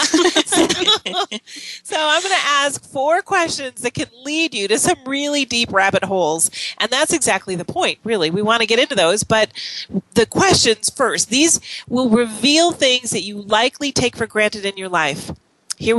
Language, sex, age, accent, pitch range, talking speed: English, female, 40-59, American, 215-295 Hz, 175 wpm